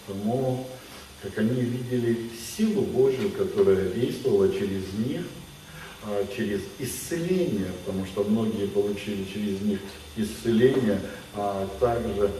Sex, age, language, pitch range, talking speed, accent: male, 50-69, Russian, 100-125 Hz, 100 wpm, native